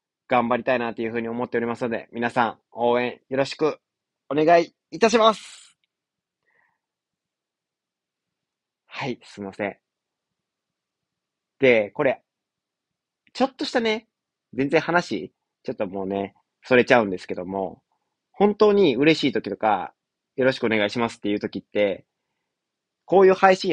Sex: male